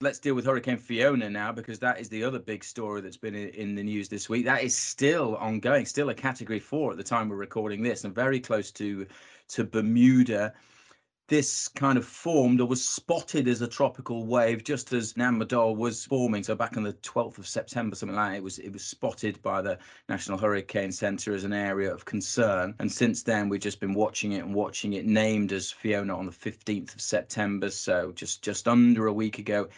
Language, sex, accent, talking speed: English, male, British, 215 wpm